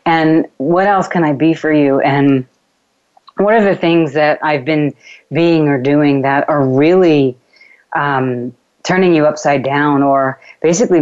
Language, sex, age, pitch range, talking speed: English, female, 30-49, 135-160 Hz, 160 wpm